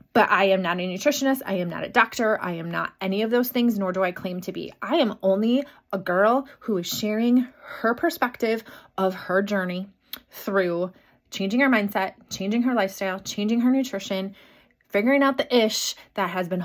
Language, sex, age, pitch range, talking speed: English, female, 20-39, 200-255 Hz, 195 wpm